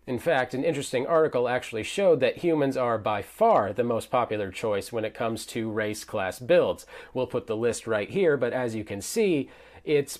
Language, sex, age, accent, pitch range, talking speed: English, male, 30-49, American, 115-155 Hz, 205 wpm